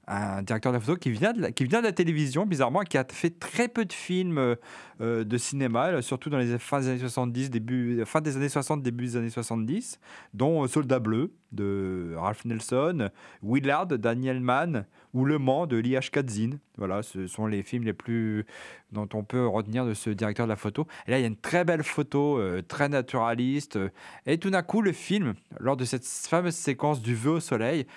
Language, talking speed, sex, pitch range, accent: French, 220 wpm, male, 110-145 Hz, French